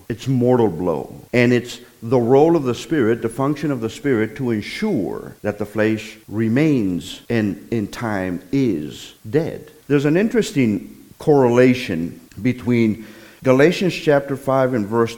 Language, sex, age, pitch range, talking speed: English, male, 50-69, 115-150 Hz, 140 wpm